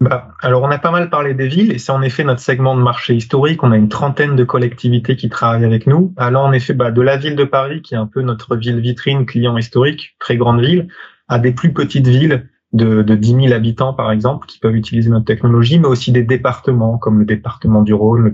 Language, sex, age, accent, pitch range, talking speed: French, male, 20-39, French, 110-130 Hz, 250 wpm